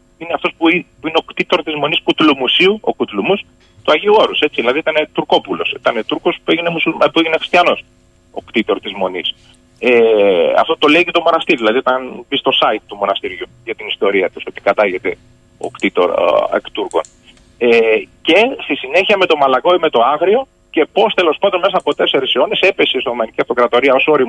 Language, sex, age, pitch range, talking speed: Greek, male, 30-49, 125-180 Hz, 190 wpm